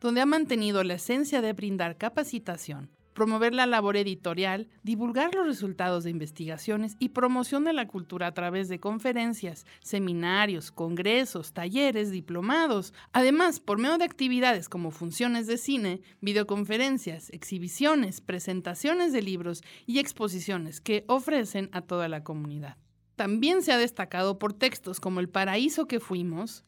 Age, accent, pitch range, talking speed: 50-69, Mexican, 180-255 Hz, 140 wpm